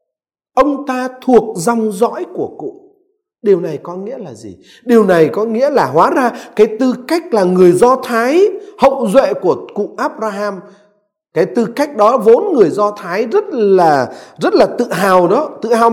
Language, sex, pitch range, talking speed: Vietnamese, male, 175-280 Hz, 185 wpm